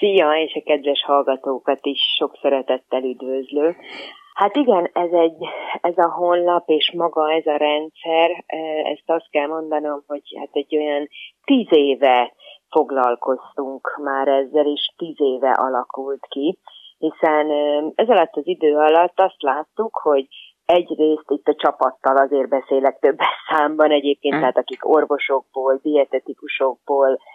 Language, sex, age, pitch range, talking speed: Hungarian, female, 30-49, 140-165 Hz, 135 wpm